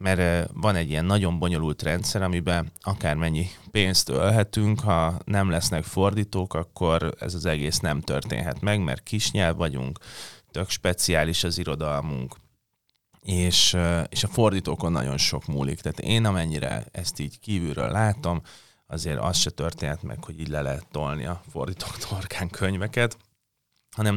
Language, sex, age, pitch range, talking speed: Hungarian, male, 30-49, 80-100 Hz, 145 wpm